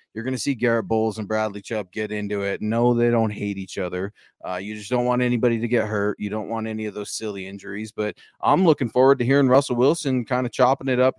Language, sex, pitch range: English, male, 105-125 Hz